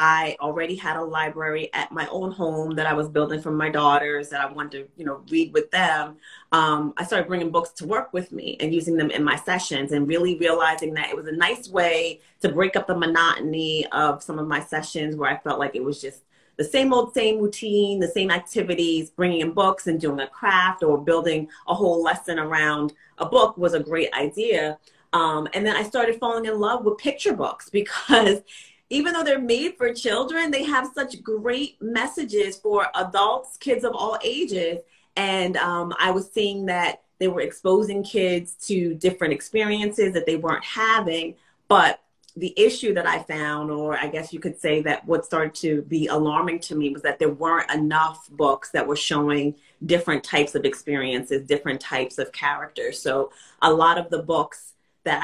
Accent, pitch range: American, 155-210 Hz